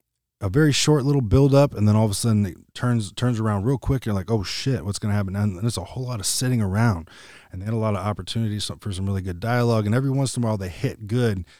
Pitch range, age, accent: 95-115 Hz, 20-39, American